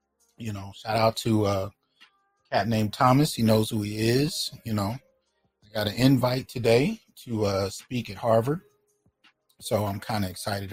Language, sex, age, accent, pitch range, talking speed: English, male, 30-49, American, 105-135 Hz, 180 wpm